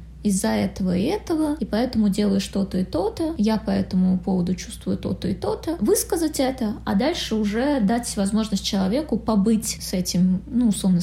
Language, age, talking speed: Russian, 20-39, 175 wpm